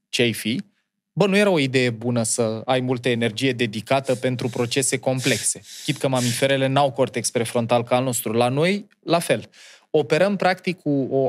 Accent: native